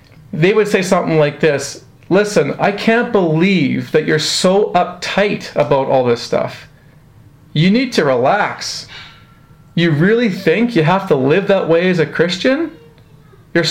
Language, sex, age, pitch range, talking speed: English, male, 40-59, 150-195 Hz, 155 wpm